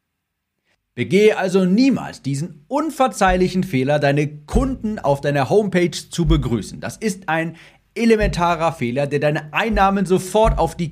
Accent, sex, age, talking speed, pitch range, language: German, male, 40-59, 130 wpm, 135-190 Hz, German